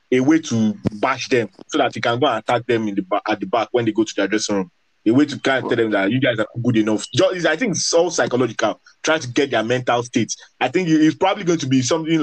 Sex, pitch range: male, 110-145 Hz